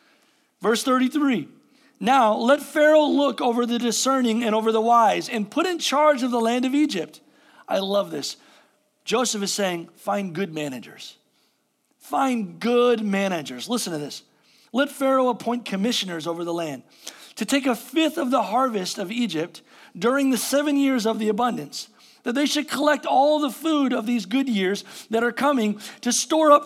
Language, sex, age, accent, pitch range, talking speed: English, male, 50-69, American, 195-260 Hz, 175 wpm